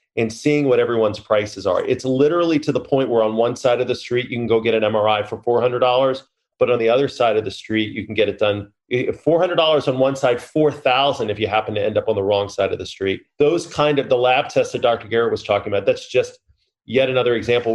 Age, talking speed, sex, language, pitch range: 30-49, 250 wpm, male, English, 110-140 Hz